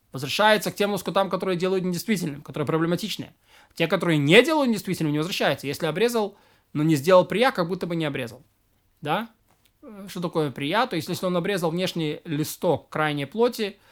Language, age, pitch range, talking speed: Russian, 20-39, 155-190 Hz, 170 wpm